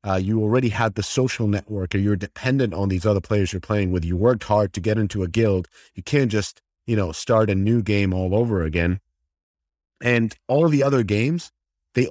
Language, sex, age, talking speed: English, male, 30-49, 220 wpm